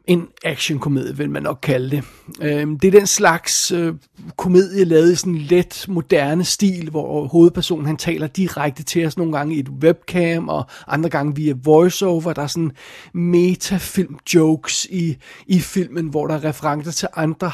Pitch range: 150-180 Hz